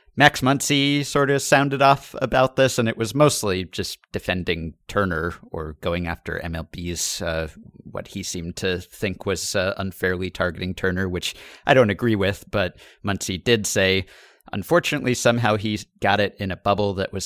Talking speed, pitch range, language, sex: 170 wpm, 90-115 Hz, English, male